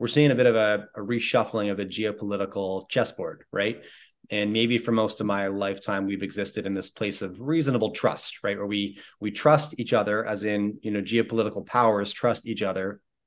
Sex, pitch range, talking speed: male, 100-115 Hz, 200 wpm